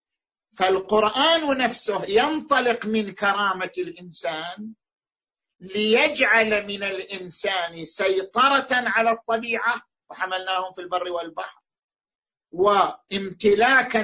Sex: male